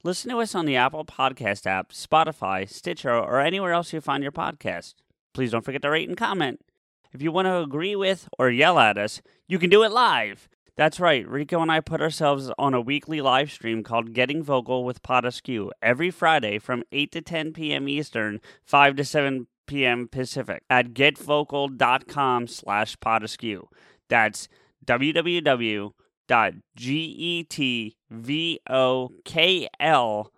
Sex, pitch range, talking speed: male, 125-160 Hz, 150 wpm